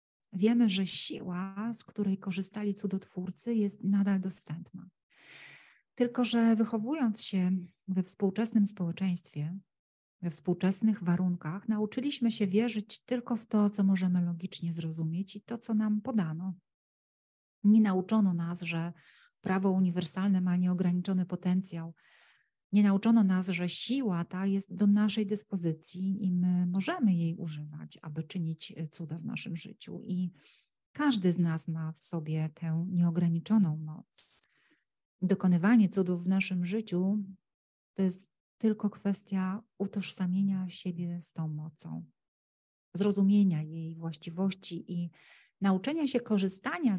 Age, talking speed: 40-59, 125 wpm